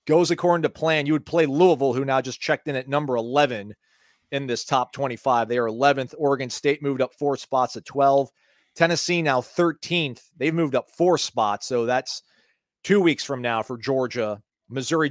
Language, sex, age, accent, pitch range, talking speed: English, male, 40-59, American, 125-155 Hz, 190 wpm